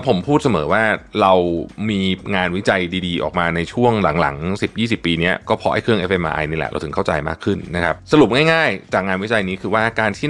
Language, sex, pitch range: Thai, male, 85-115 Hz